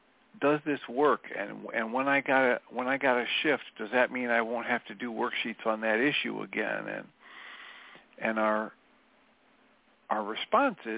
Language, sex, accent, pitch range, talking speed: English, male, American, 120-155 Hz, 175 wpm